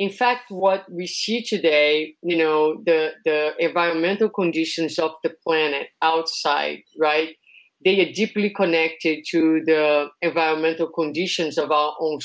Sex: female